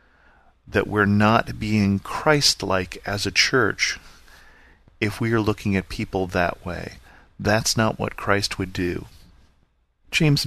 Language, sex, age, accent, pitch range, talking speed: English, male, 40-59, American, 95-110 Hz, 130 wpm